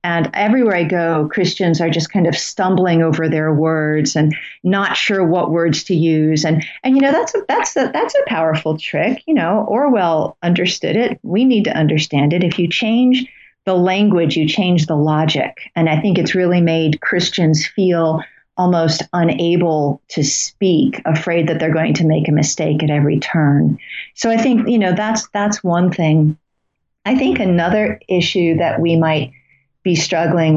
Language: English